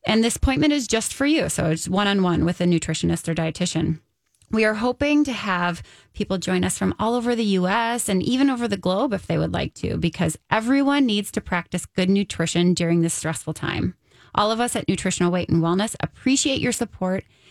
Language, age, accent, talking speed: English, 30-49, American, 205 wpm